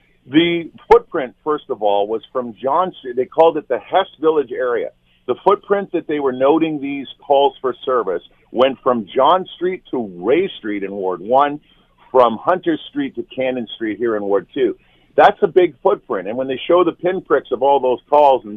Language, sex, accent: English, male, American